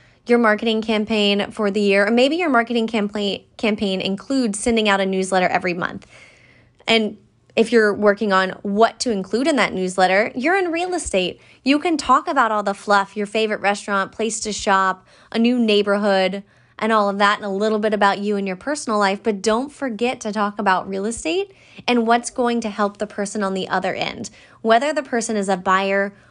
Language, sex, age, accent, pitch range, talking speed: English, female, 20-39, American, 200-250 Hz, 205 wpm